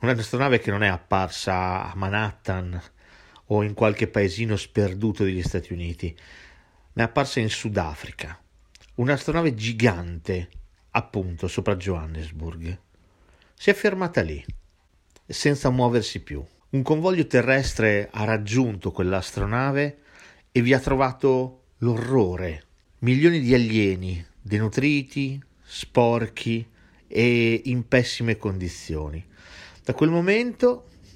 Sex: male